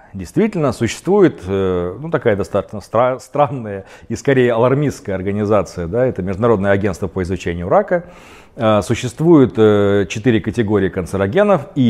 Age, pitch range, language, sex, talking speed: 40-59, 100-145 Hz, Russian, male, 115 wpm